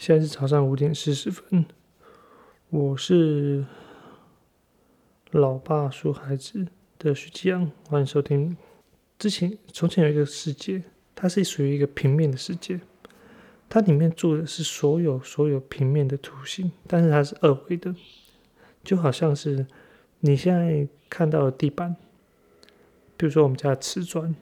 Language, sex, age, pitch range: Chinese, male, 30-49, 140-170 Hz